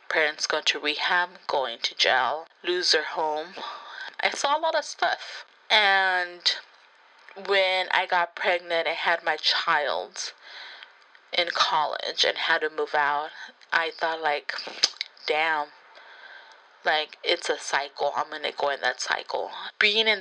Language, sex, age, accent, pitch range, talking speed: English, female, 20-39, American, 165-195 Hz, 145 wpm